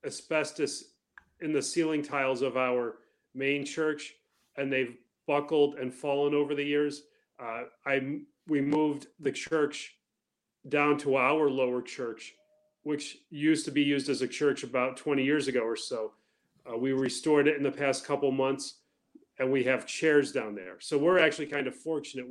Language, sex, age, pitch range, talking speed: English, male, 40-59, 130-150 Hz, 170 wpm